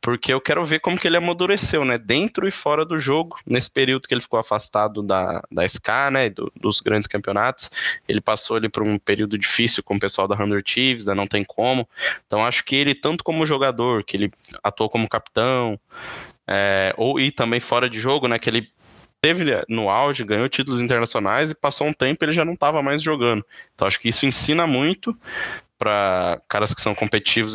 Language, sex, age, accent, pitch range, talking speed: Portuguese, male, 20-39, Brazilian, 105-145 Hz, 205 wpm